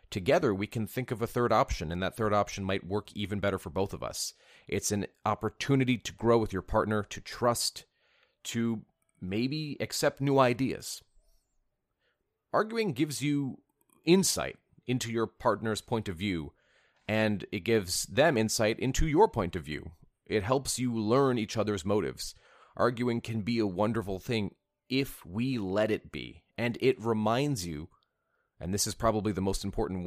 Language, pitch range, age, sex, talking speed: English, 95-120 Hz, 30-49, male, 170 wpm